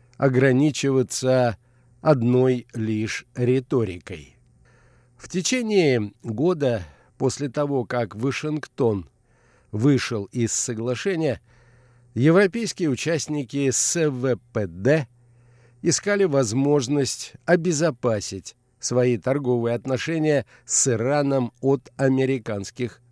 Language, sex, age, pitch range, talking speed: Russian, male, 50-69, 120-145 Hz, 70 wpm